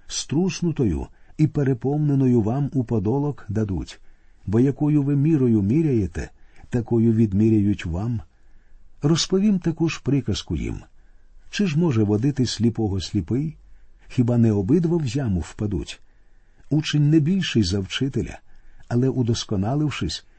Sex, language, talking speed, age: male, Ukrainian, 115 wpm, 50-69